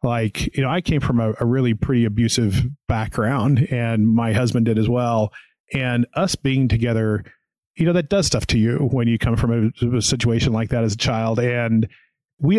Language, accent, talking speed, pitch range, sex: English, American, 205 wpm, 115-140 Hz, male